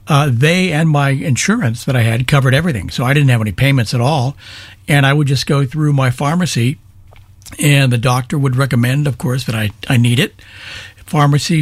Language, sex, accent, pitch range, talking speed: English, male, American, 105-150 Hz, 200 wpm